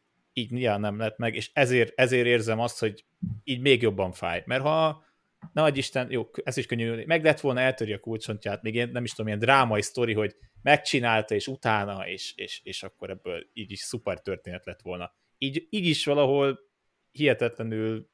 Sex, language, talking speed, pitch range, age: male, Hungarian, 180 wpm, 105-130 Hz, 30-49